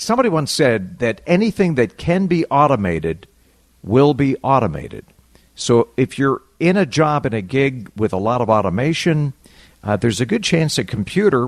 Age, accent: 50-69, American